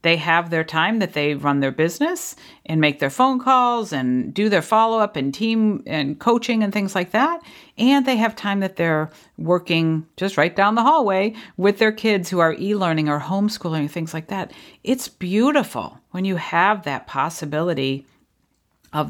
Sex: female